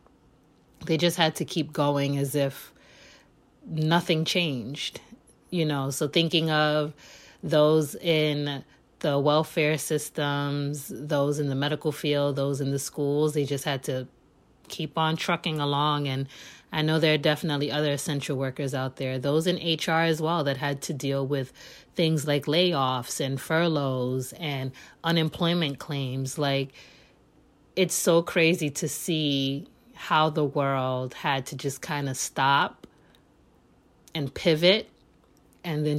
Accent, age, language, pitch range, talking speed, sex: American, 30-49, English, 140-165 Hz, 140 wpm, female